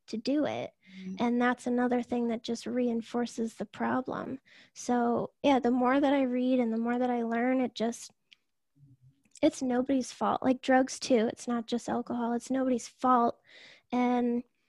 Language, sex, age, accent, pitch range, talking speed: English, female, 10-29, American, 235-255 Hz, 165 wpm